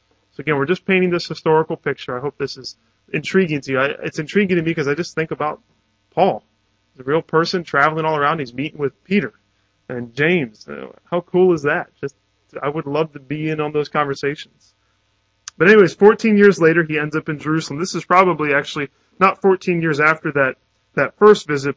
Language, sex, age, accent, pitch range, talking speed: English, male, 20-39, American, 130-165 Hz, 205 wpm